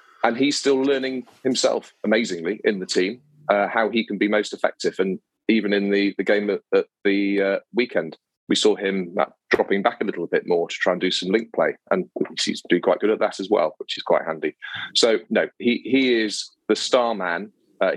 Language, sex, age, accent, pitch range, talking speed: English, male, 30-49, British, 95-110 Hz, 220 wpm